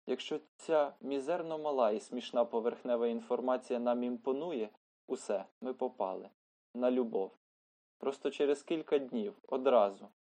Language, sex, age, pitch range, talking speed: Ukrainian, male, 20-39, 120-140 Hz, 115 wpm